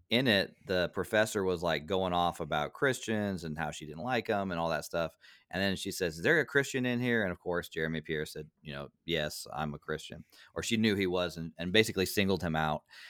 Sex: male